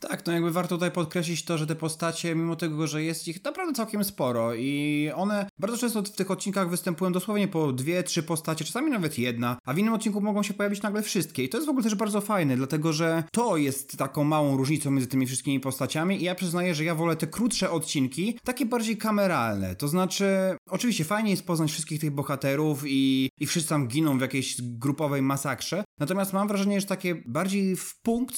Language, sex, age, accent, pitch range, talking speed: Polish, male, 30-49, native, 145-190 Hz, 210 wpm